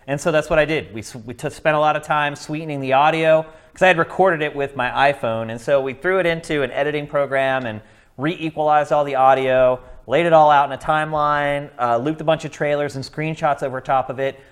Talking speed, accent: 240 wpm, American